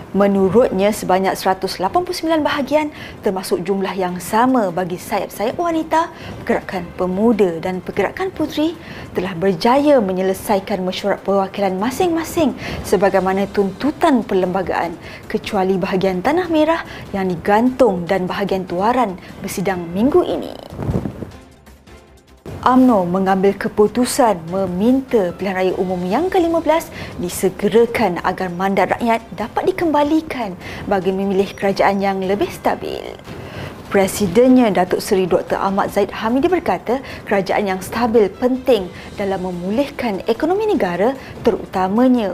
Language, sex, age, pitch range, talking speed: Malay, female, 20-39, 190-250 Hz, 105 wpm